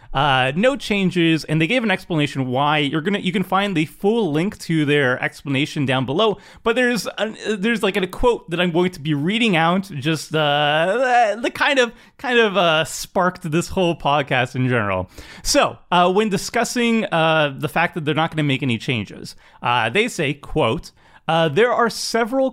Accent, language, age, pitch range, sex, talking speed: American, English, 30-49, 145-205 Hz, male, 190 wpm